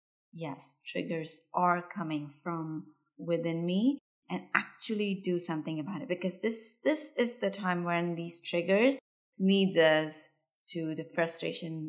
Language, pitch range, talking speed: English, 165-195 Hz, 135 wpm